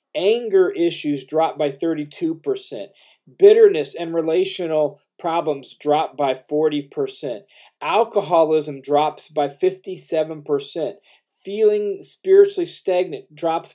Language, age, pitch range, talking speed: English, 40-59, 145-210 Hz, 85 wpm